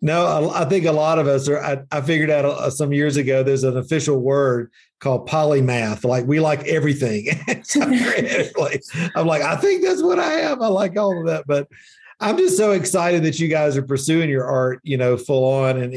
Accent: American